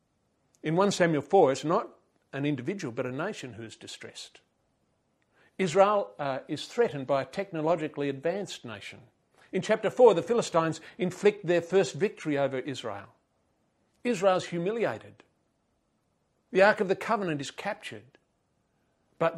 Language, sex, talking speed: English, male, 135 wpm